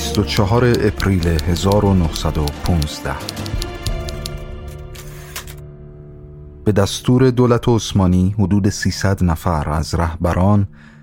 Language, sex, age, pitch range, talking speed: Persian, male, 30-49, 80-100 Hz, 65 wpm